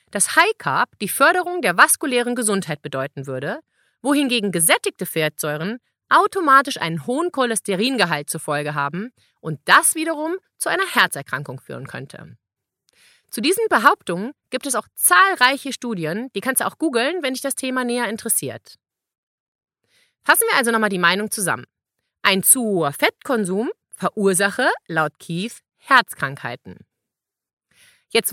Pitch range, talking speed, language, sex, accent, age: 170-265 Hz, 135 wpm, German, female, German, 30-49